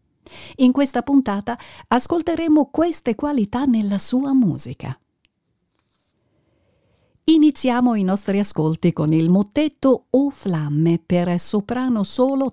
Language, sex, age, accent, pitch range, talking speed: Italian, female, 50-69, native, 165-245 Hz, 100 wpm